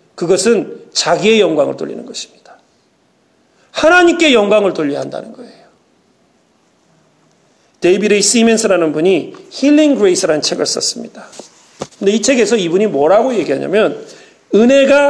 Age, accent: 40-59, native